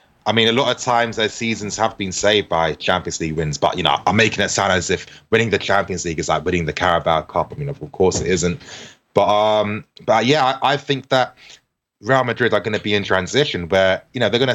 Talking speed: 250 wpm